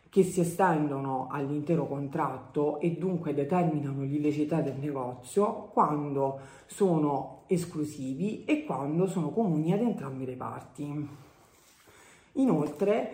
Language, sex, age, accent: Italian, female, 40-59, native